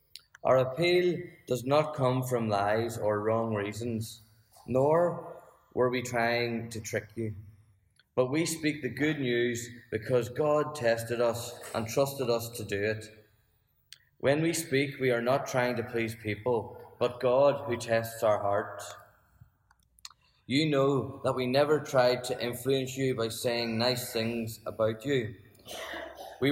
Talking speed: 145 wpm